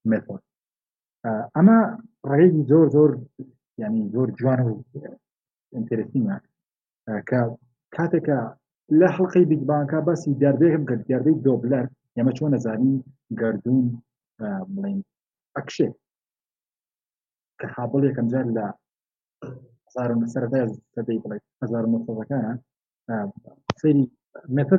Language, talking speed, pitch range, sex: Arabic, 55 wpm, 120-150 Hz, male